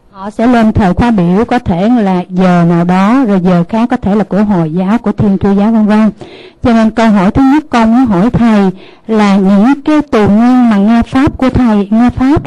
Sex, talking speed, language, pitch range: female, 235 wpm, Vietnamese, 210-260 Hz